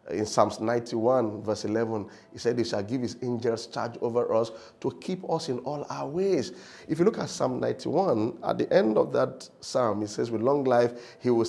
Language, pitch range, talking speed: English, 110-145 Hz, 215 wpm